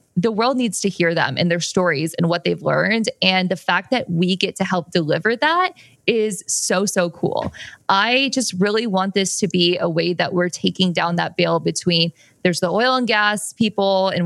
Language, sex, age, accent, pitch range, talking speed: English, female, 20-39, American, 175-210 Hz, 210 wpm